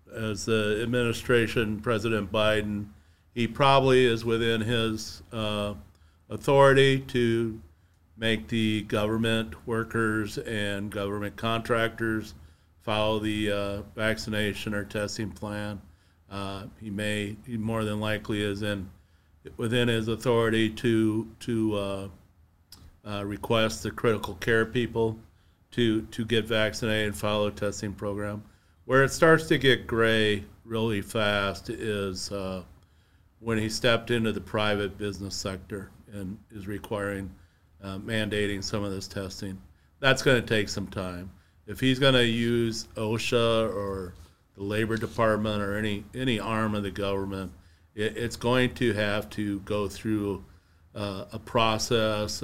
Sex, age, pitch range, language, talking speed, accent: male, 50-69, 100-115 Hz, English, 130 wpm, American